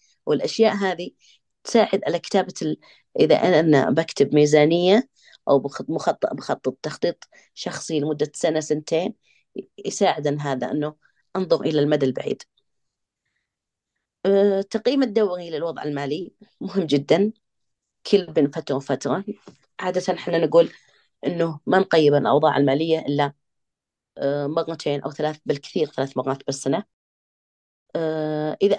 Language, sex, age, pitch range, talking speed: Arabic, female, 30-49, 145-195 Hz, 110 wpm